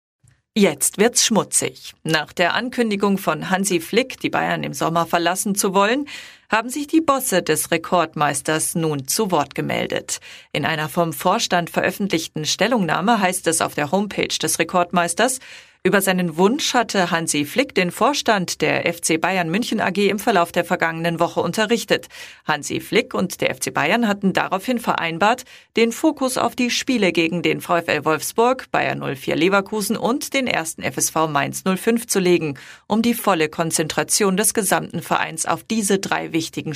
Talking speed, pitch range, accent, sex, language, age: 160 wpm, 165-220 Hz, German, female, German, 40-59